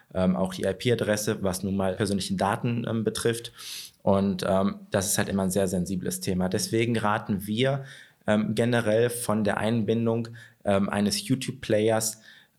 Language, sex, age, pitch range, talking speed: German, male, 20-39, 100-125 Hz, 155 wpm